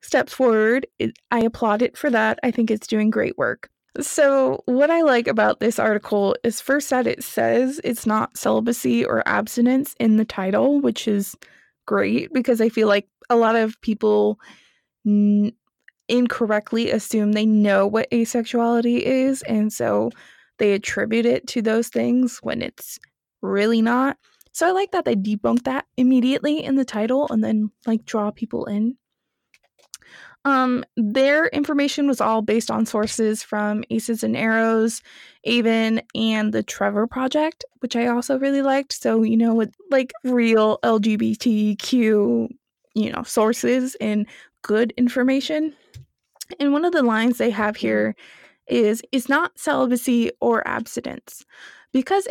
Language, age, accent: English, 20-39, American